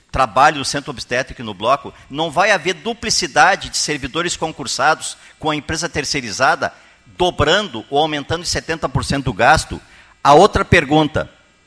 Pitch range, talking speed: 140-180 Hz, 140 wpm